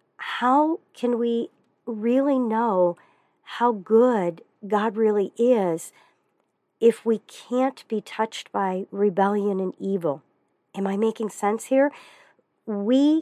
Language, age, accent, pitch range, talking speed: English, 50-69, American, 185-225 Hz, 115 wpm